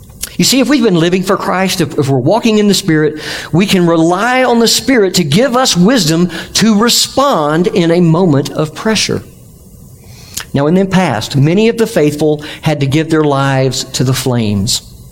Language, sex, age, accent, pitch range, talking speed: English, male, 50-69, American, 120-180 Hz, 190 wpm